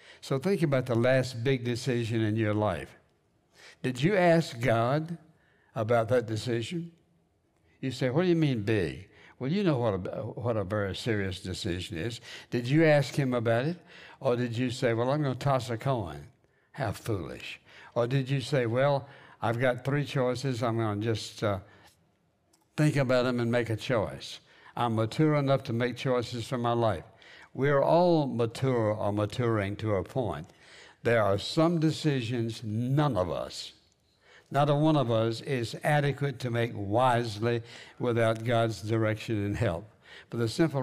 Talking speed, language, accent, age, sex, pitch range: 170 wpm, English, American, 60-79, male, 115-140 Hz